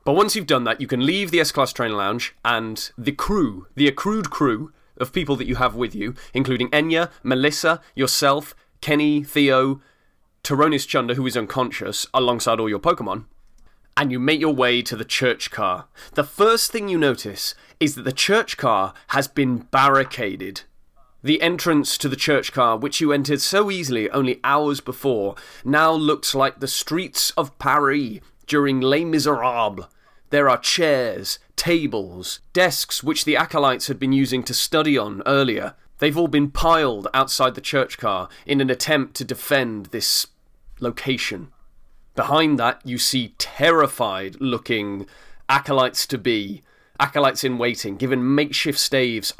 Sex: male